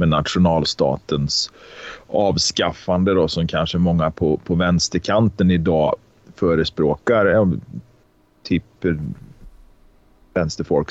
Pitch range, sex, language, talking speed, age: 80-95 Hz, male, Swedish, 75 wpm, 30-49